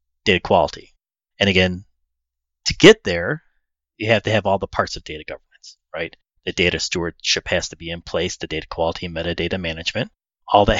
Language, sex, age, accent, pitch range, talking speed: English, male, 30-49, American, 90-115 Hz, 185 wpm